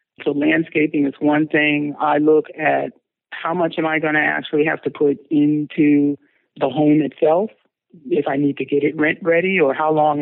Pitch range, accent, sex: 140-160 Hz, American, male